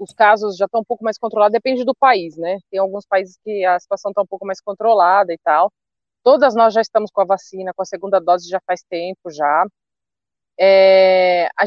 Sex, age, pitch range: female, 20-39, 190-235 Hz